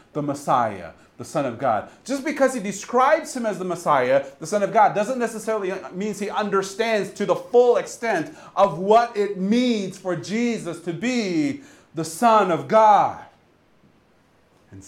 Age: 40-59